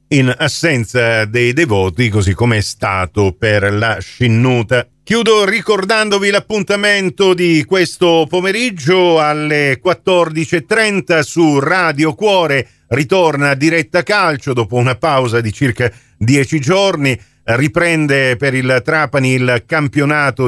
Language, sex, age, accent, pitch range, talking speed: Italian, male, 50-69, native, 125-175 Hz, 110 wpm